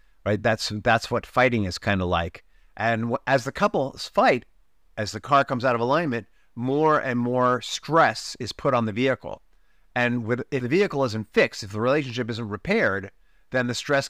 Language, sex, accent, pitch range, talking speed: English, male, American, 110-140 Hz, 185 wpm